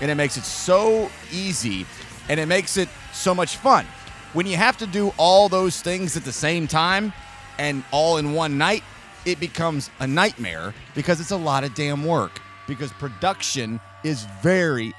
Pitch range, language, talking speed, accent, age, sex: 125-175 Hz, English, 180 wpm, American, 30-49, male